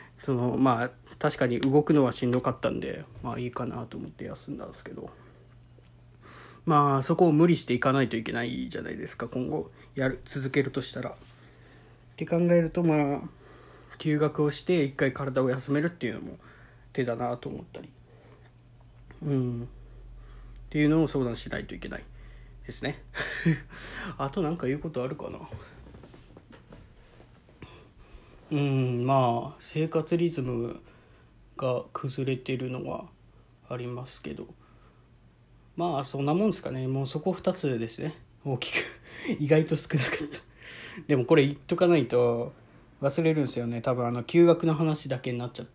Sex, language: male, Japanese